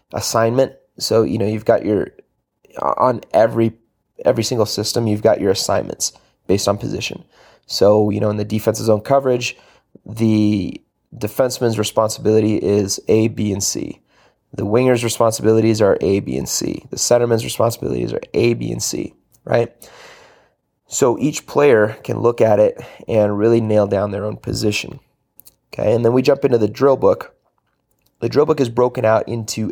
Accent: American